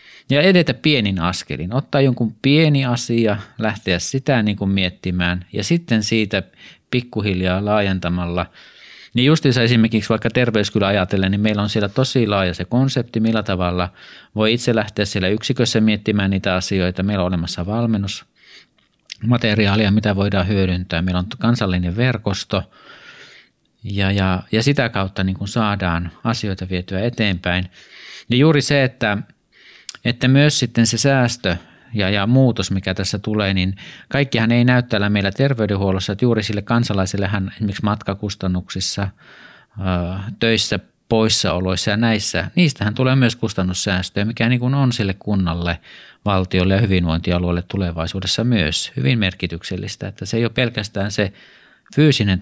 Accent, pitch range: native, 95-115 Hz